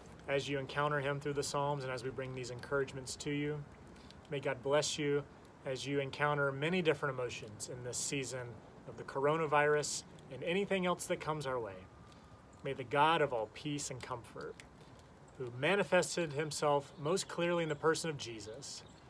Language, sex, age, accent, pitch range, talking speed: English, male, 30-49, American, 120-150 Hz, 175 wpm